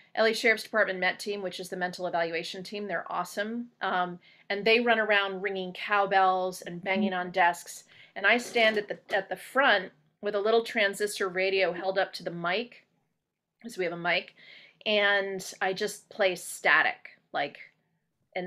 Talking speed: 180 wpm